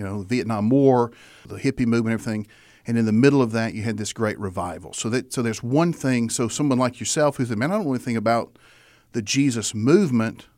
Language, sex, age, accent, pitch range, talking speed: English, male, 40-59, American, 110-135 Hz, 245 wpm